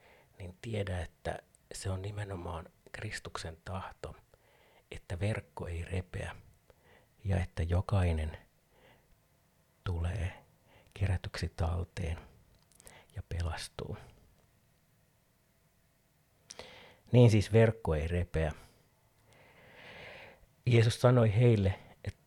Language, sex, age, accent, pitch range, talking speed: Finnish, male, 50-69, native, 90-110 Hz, 80 wpm